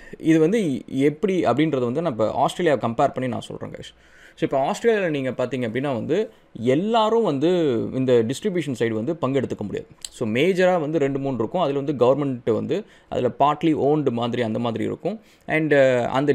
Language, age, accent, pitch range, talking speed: English, 20-39, Indian, 125-165 Hz, 35 wpm